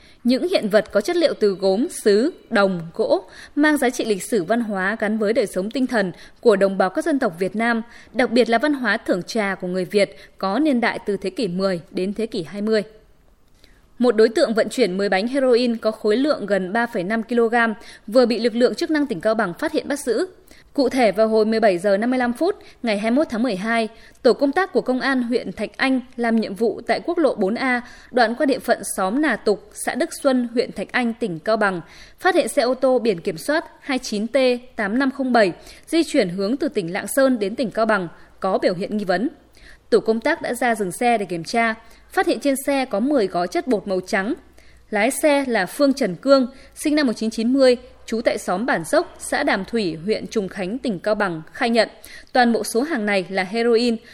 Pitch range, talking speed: 210-270 Hz, 220 wpm